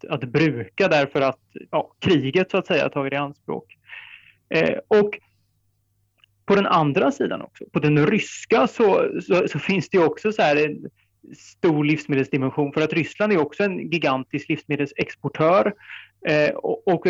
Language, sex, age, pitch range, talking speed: Swedish, male, 30-49, 130-160 Hz, 160 wpm